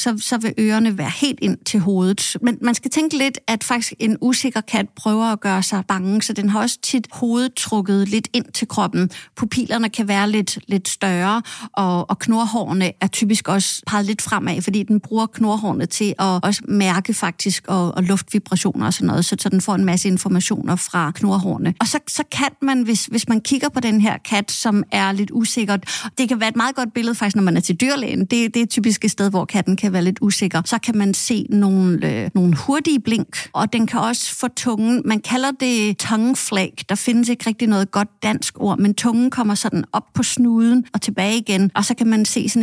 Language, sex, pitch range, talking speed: Danish, female, 200-235 Hz, 225 wpm